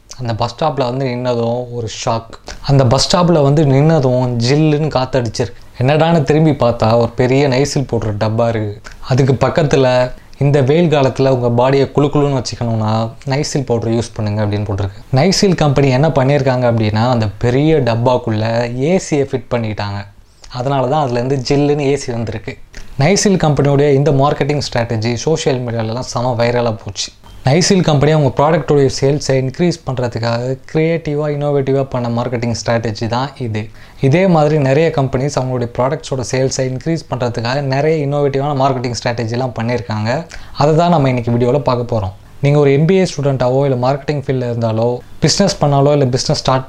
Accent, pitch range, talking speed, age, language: native, 115-145 Hz, 145 wpm, 20-39, Tamil